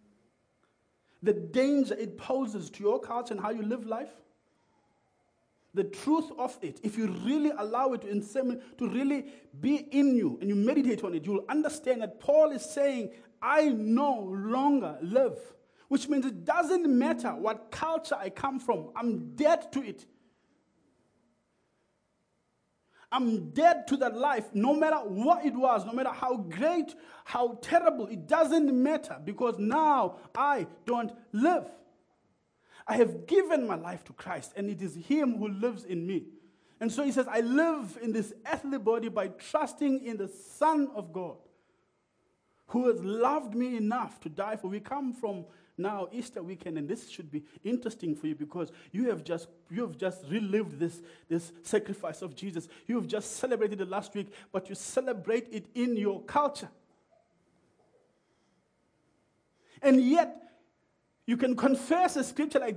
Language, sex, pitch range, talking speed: English, male, 205-280 Hz, 160 wpm